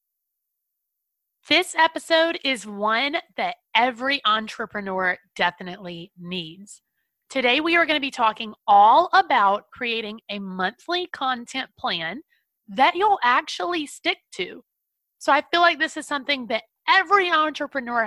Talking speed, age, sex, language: 125 wpm, 30-49, female, English